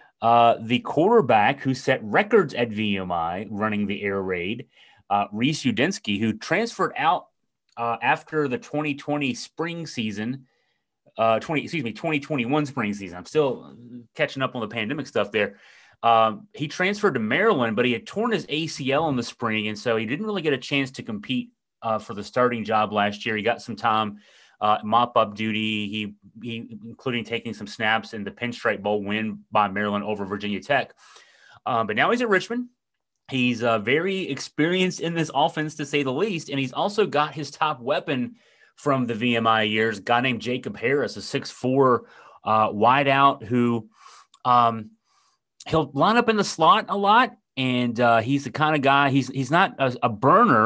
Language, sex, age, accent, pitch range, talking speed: English, male, 30-49, American, 110-150 Hz, 185 wpm